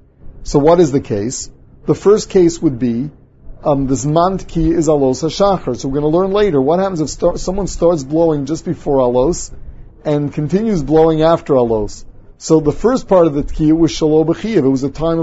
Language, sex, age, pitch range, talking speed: English, male, 40-59, 140-175 Hz, 205 wpm